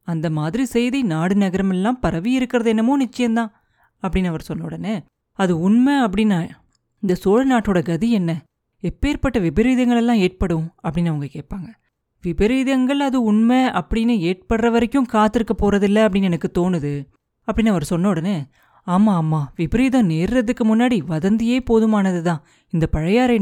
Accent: native